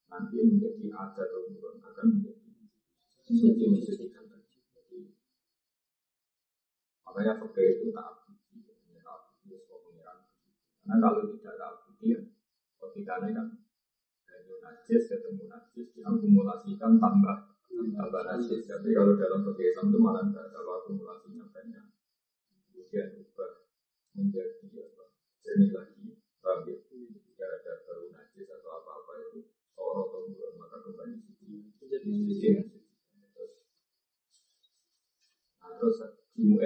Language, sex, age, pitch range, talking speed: Indonesian, male, 50-69, 210-345 Hz, 45 wpm